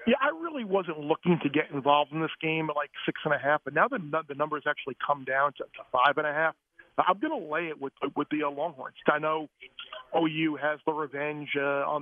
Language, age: English, 40-59